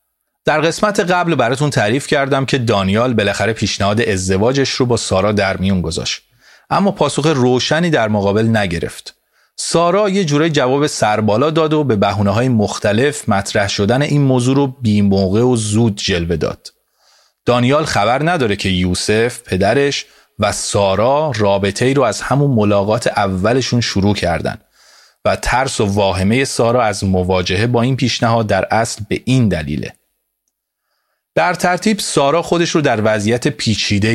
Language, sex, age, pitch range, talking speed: Persian, male, 30-49, 100-135 Hz, 145 wpm